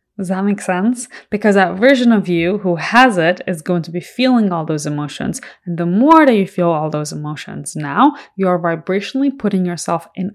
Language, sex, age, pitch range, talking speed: English, female, 20-39, 170-220 Hz, 205 wpm